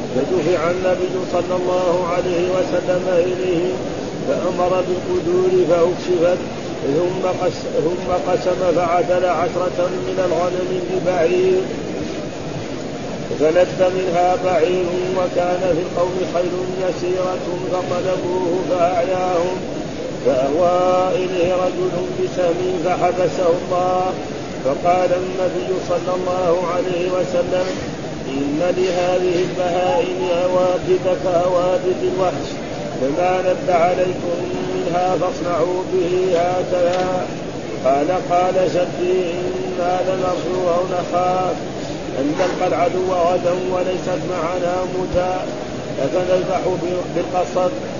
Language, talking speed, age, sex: Arabic, 85 wpm, 40-59, male